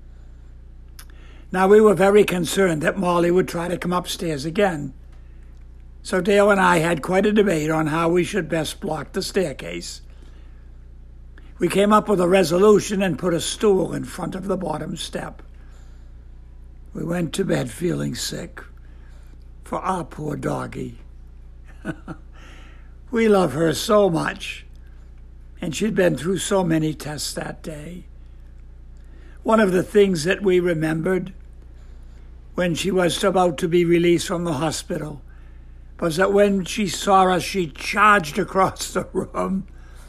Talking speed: 145 wpm